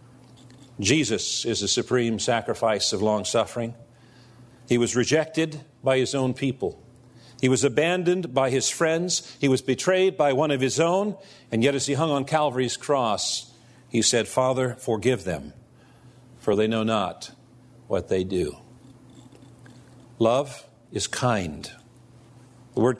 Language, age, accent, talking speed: English, 50-69, American, 140 wpm